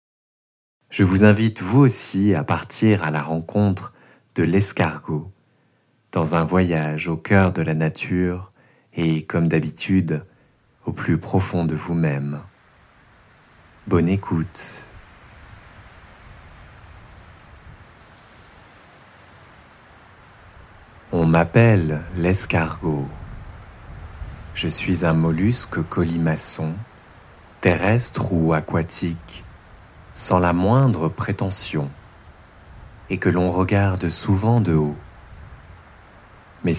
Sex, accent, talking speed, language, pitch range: male, French, 85 wpm, French, 80-100 Hz